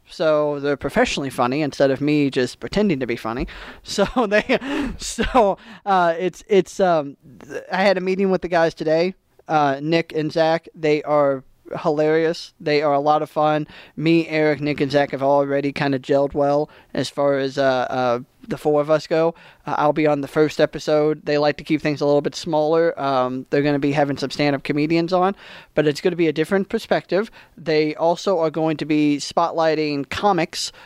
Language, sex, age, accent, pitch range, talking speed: English, male, 20-39, American, 145-180 Hz, 200 wpm